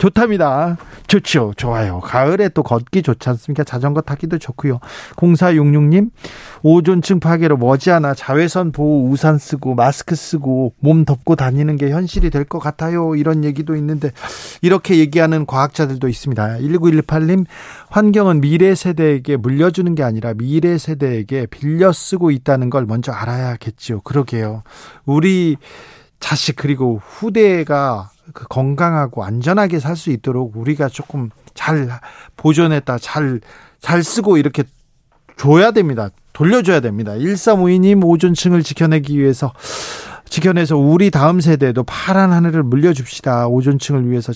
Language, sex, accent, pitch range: Korean, male, native, 130-170 Hz